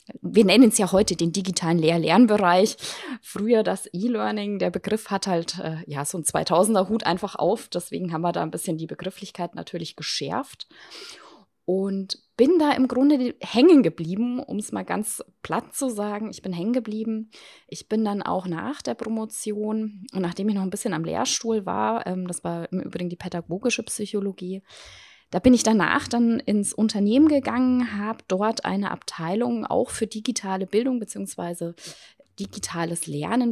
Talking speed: 170 wpm